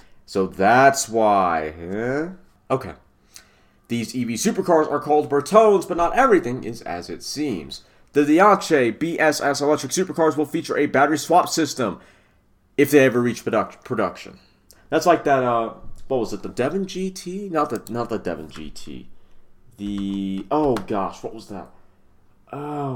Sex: male